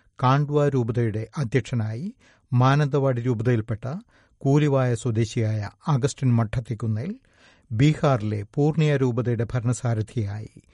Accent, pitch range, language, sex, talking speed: native, 110-135 Hz, Malayalam, male, 75 wpm